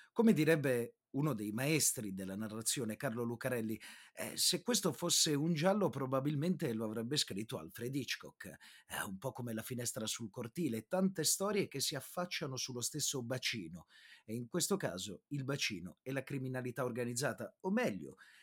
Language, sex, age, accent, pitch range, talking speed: Italian, male, 30-49, native, 115-165 Hz, 160 wpm